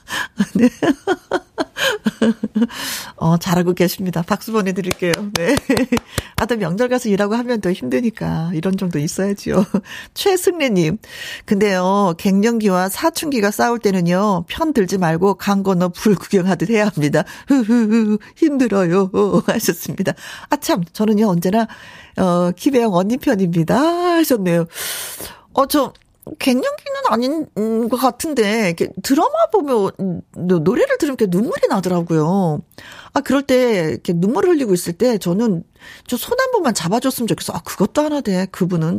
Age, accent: 40-59, native